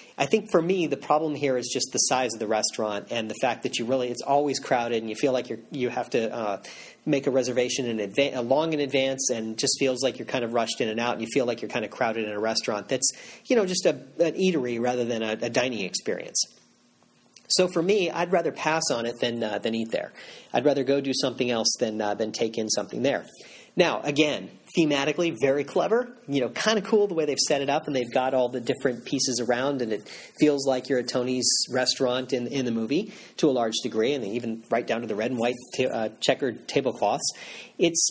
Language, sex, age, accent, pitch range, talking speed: English, male, 40-59, American, 120-150 Hz, 255 wpm